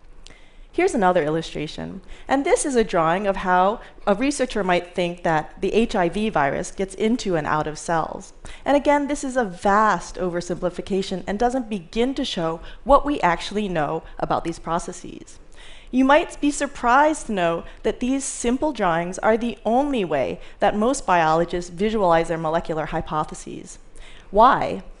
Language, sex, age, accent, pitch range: Chinese, female, 30-49, American, 180-245 Hz